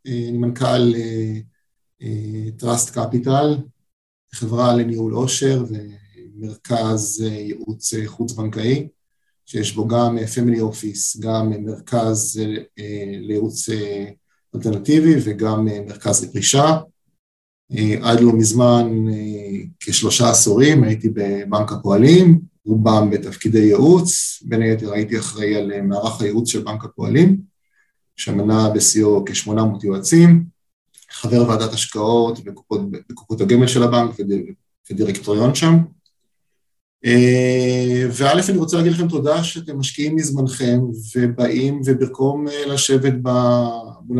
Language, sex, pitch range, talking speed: Hebrew, male, 110-130 Hz, 95 wpm